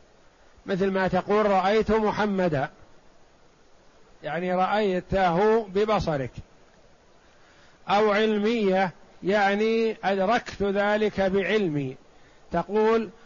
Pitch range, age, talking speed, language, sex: 170-205 Hz, 50-69, 70 wpm, Arabic, male